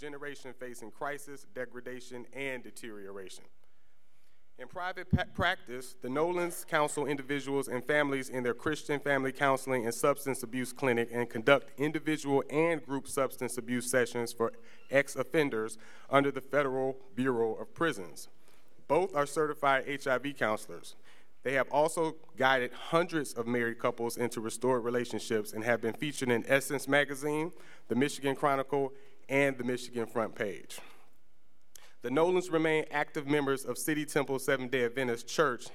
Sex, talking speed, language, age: male, 140 wpm, English, 30-49